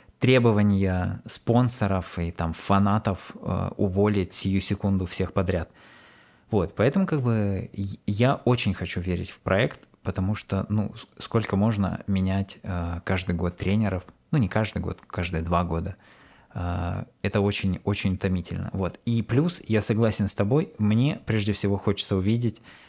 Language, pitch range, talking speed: Russian, 95-110 Hz, 140 wpm